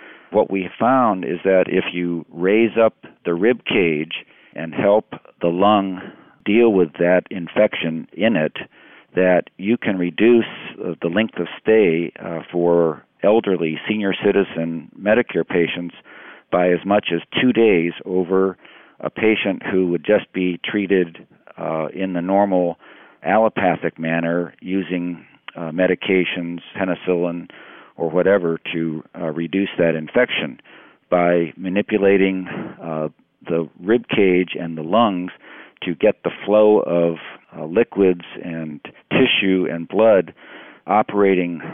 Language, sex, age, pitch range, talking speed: English, male, 50-69, 85-100 Hz, 125 wpm